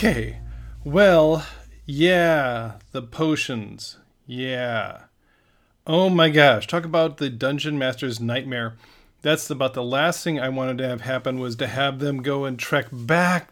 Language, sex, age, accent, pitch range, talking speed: English, male, 40-59, American, 120-155 Hz, 145 wpm